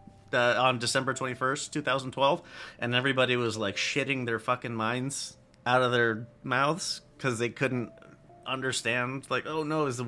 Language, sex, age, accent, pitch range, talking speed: English, male, 30-49, American, 115-150 Hz, 155 wpm